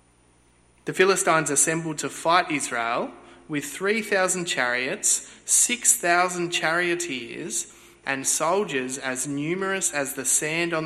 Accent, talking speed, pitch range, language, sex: Australian, 105 wpm, 130-180 Hz, English, male